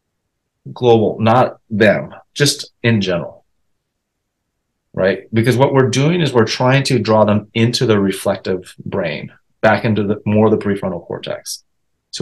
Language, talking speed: English, 145 wpm